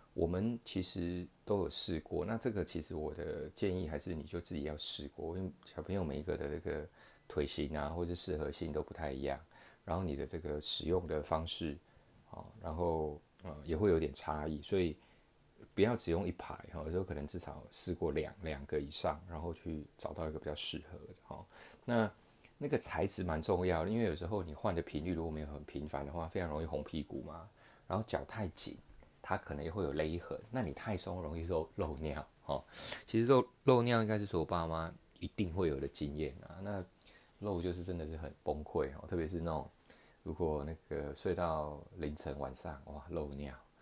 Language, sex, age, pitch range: Chinese, male, 30-49, 75-90 Hz